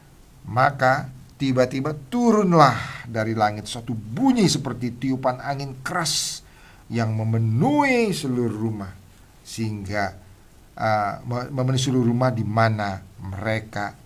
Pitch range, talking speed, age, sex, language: 95-130 Hz, 100 wpm, 50-69, male, English